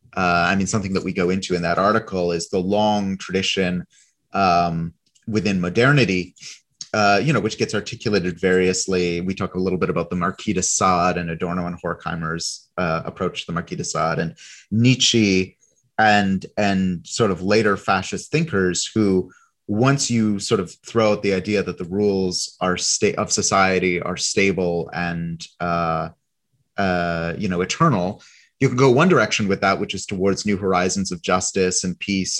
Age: 30-49